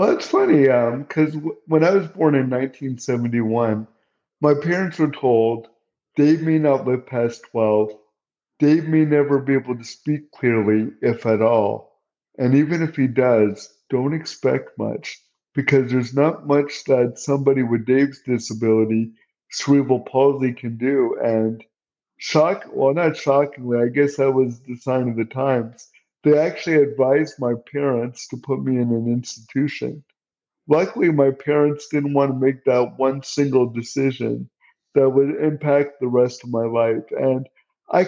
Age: 50-69